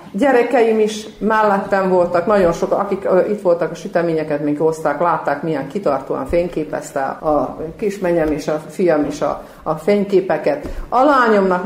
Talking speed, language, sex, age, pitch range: 150 wpm, Hungarian, female, 50-69, 155-215 Hz